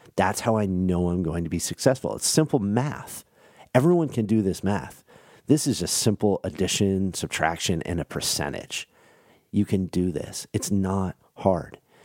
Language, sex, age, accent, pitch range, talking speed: English, male, 40-59, American, 90-120 Hz, 165 wpm